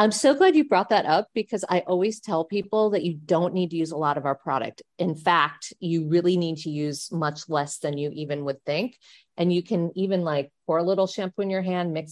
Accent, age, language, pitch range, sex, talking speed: American, 40-59, English, 160-195 Hz, female, 250 wpm